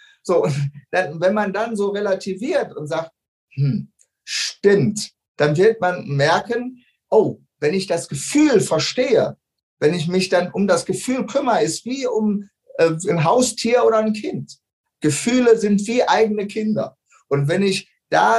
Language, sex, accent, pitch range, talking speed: German, male, German, 165-220 Hz, 150 wpm